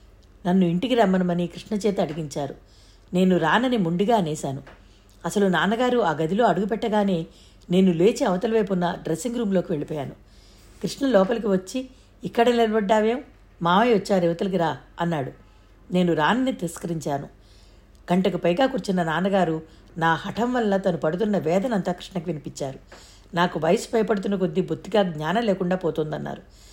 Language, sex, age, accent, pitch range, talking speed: Telugu, female, 60-79, native, 160-210 Hz, 125 wpm